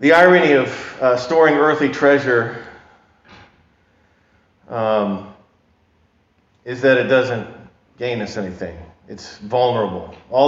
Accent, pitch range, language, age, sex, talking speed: American, 110-155 Hz, English, 40-59, male, 105 wpm